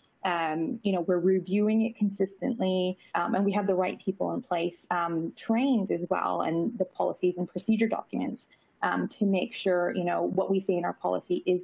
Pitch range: 175-215 Hz